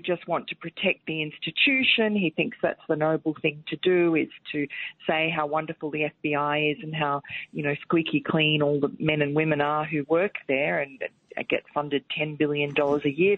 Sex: female